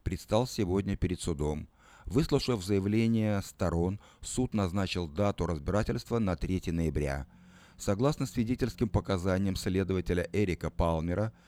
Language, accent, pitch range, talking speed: Russian, native, 85-110 Hz, 105 wpm